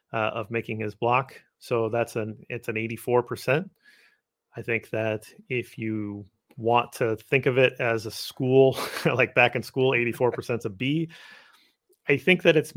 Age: 30-49